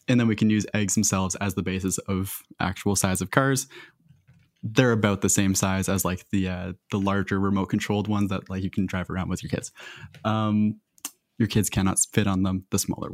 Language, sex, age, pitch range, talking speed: English, male, 20-39, 95-125 Hz, 215 wpm